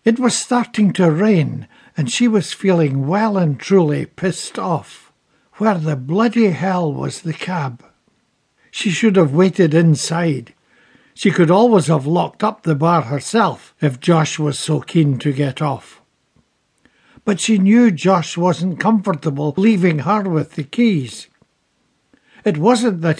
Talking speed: 145 wpm